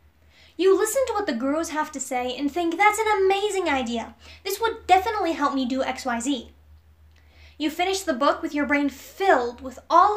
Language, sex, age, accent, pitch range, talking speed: English, female, 10-29, American, 235-345 Hz, 190 wpm